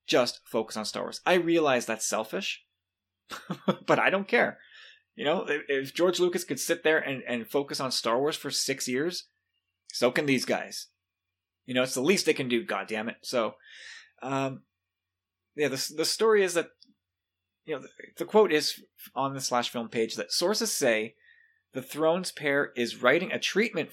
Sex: male